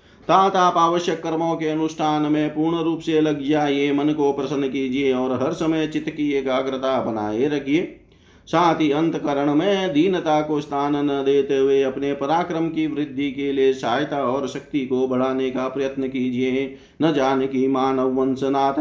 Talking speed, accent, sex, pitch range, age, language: 155 wpm, native, male, 135-150 Hz, 40-59, Hindi